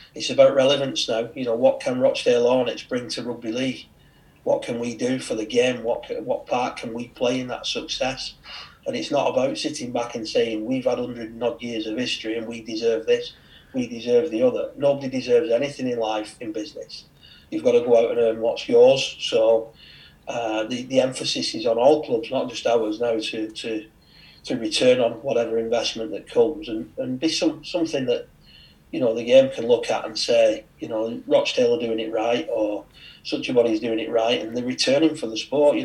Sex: male